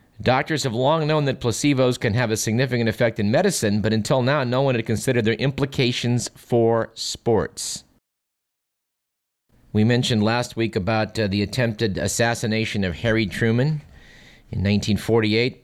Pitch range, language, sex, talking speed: 100-125 Hz, English, male, 145 wpm